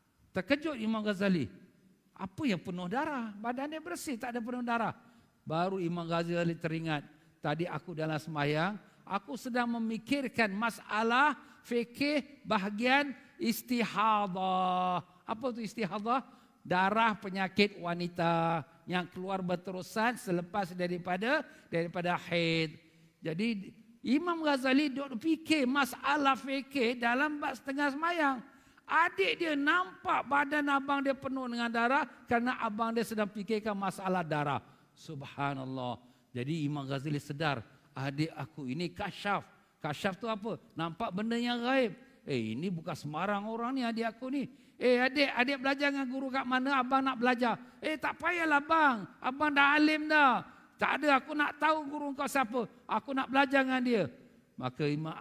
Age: 50-69